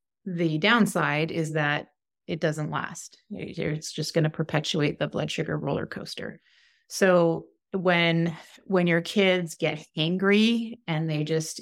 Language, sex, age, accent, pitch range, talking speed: English, female, 30-49, American, 160-205 Hz, 140 wpm